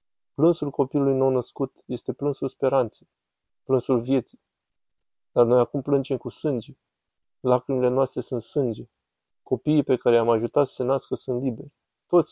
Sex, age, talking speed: male, 20-39, 145 wpm